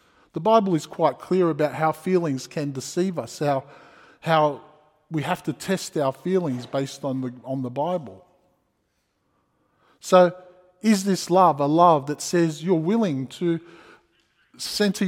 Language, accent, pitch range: English, Australian, 150-180 Hz